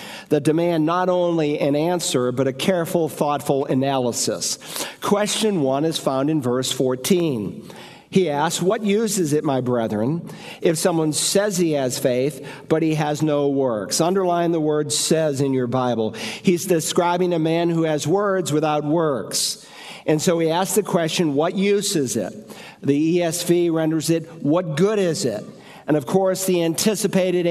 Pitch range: 150-185 Hz